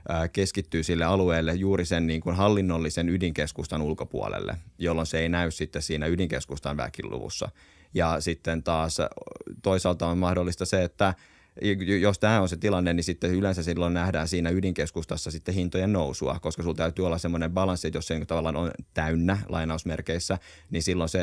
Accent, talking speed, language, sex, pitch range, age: native, 155 wpm, Finnish, male, 80-90 Hz, 30-49